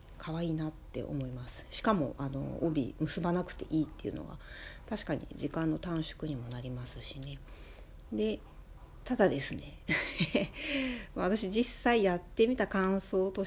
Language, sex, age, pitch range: Japanese, female, 40-59, 140-230 Hz